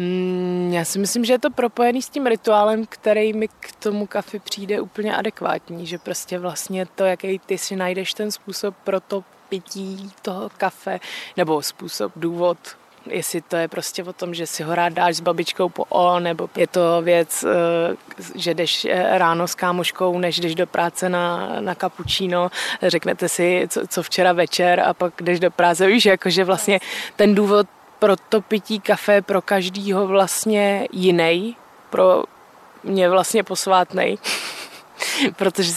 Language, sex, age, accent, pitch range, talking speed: Czech, female, 20-39, native, 175-205 Hz, 165 wpm